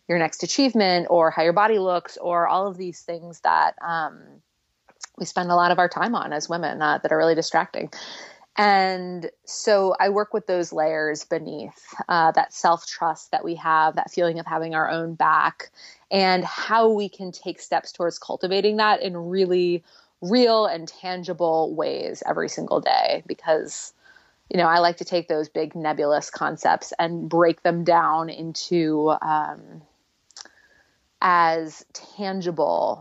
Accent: American